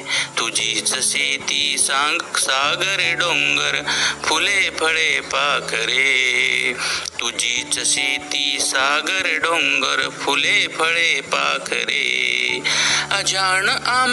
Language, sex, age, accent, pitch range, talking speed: Marathi, male, 50-69, native, 140-235 Hz, 75 wpm